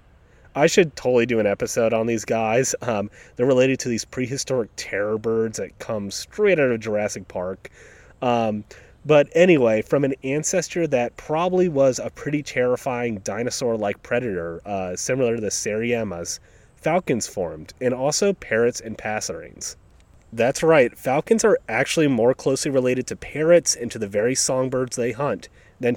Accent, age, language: American, 30-49, English